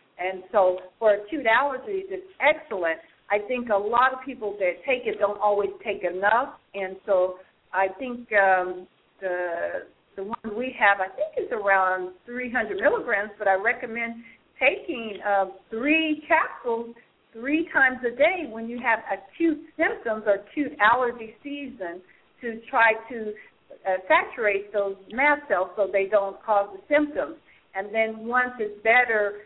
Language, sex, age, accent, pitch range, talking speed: English, female, 50-69, American, 200-250 Hz, 155 wpm